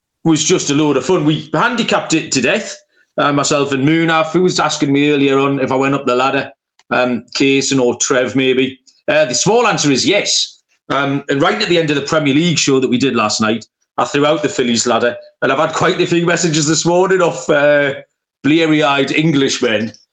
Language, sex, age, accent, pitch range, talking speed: English, male, 30-49, British, 130-175 Hz, 220 wpm